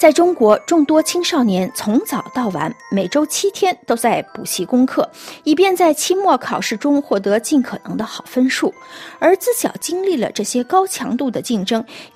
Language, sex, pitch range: Chinese, female, 230-325 Hz